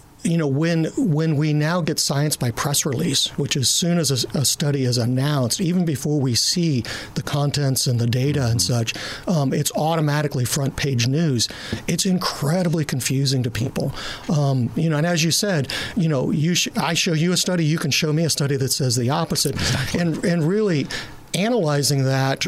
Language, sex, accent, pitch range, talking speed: English, male, American, 140-170 Hz, 195 wpm